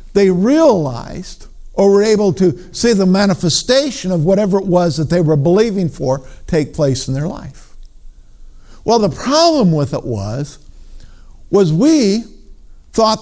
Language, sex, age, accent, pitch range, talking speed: English, male, 50-69, American, 150-210 Hz, 145 wpm